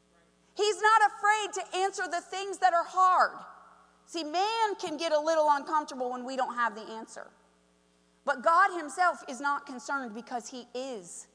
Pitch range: 235-355 Hz